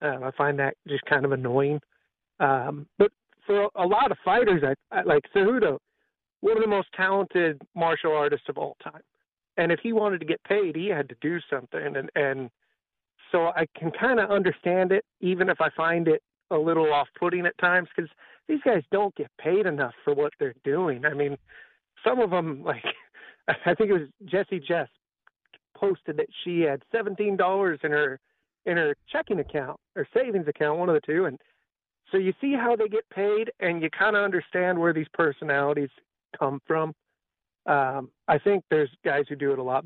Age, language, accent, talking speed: 40-59, English, American, 190 wpm